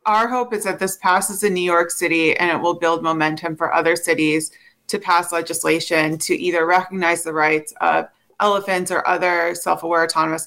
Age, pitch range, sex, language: 30-49, 160-190 Hz, female, English